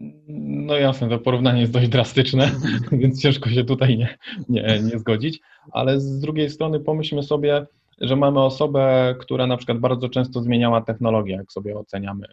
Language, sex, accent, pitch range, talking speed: Polish, male, native, 105-125 Hz, 165 wpm